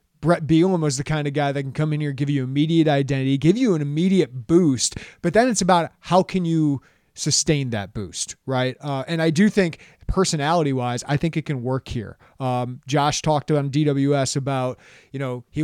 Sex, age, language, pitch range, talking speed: male, 30-49, English, 135-160 Hz, 205 wpm